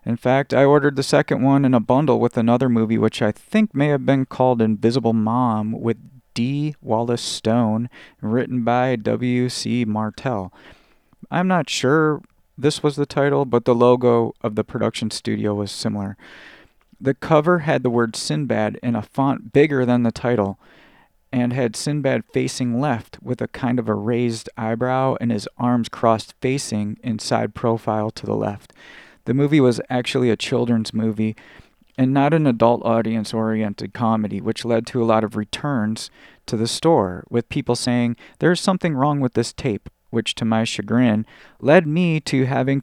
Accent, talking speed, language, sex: American, 170 wpm, English, male